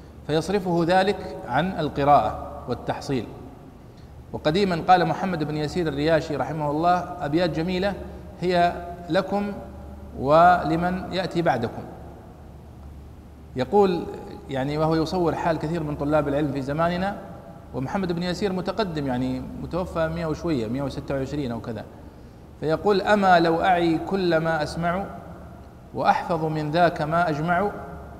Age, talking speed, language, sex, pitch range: 50-69, 120 wpm, Arabic, male, 130-185 Hz